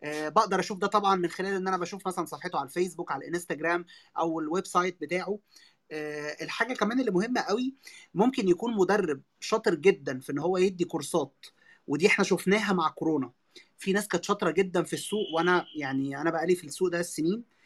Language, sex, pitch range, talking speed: Arabic, male, 170-220 Hz, 190 wpm